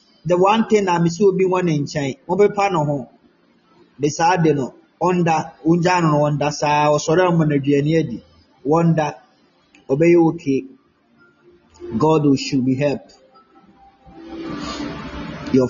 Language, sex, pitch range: Japanese, male, 140-200 Hz